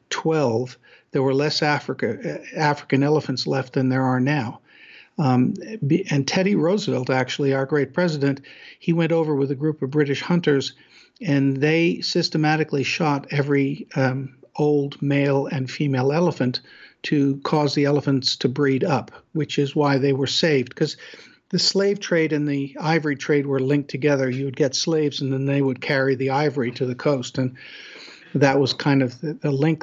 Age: 60-79